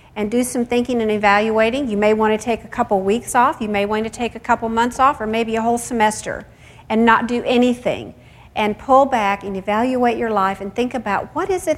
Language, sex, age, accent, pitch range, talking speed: English, female, 50-69, American, 205-255 Hz, 235 wpm